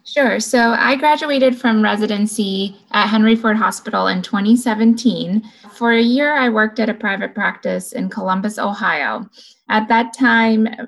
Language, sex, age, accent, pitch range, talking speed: English, female, 20-39, American, 200-245 Hz, 150 wpm